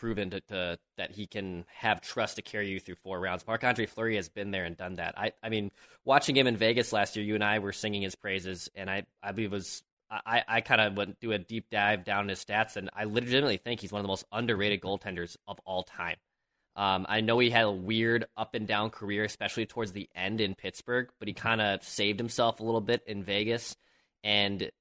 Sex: male